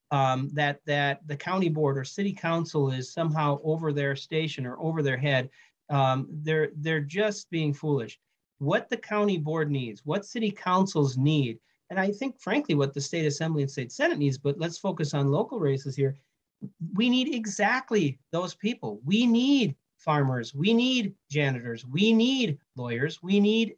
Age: 40-59